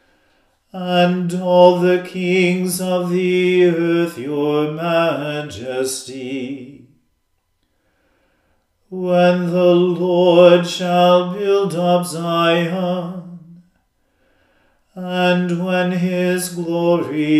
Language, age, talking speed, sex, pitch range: English, 40-59, 70 wpm, male, 150-180 Hz